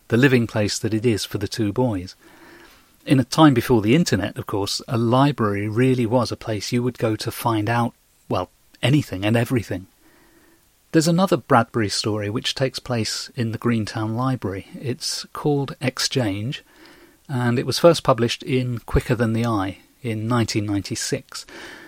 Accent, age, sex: British, 40-59, male